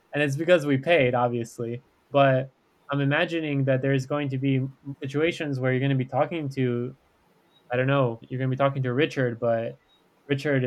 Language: English